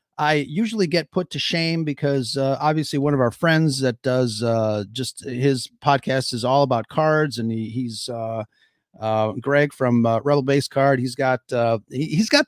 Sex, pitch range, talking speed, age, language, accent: male, 125-175 Hz, 185 wpm, 40-59, English, American